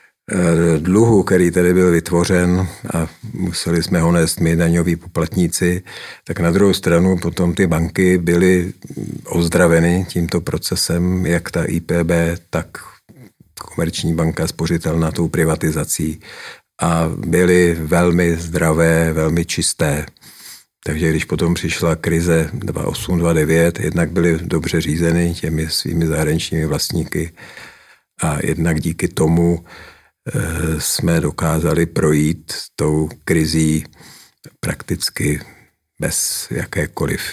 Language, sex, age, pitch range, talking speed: Czech, male, 50-69, 80-85 Hz, 105 wpm